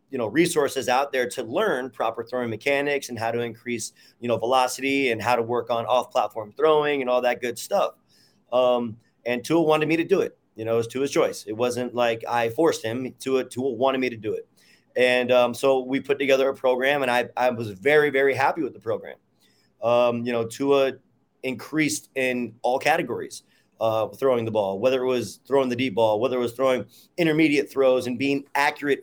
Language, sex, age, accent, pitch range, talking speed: English, male, 30-49, American, 115-135 Hz, 210 wpm